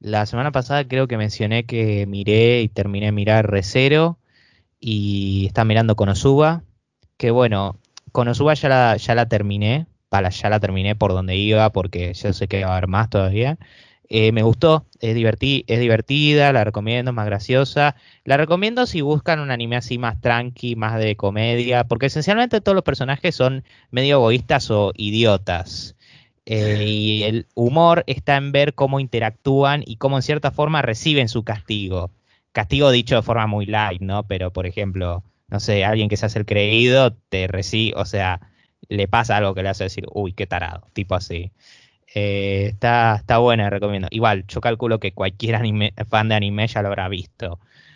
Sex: male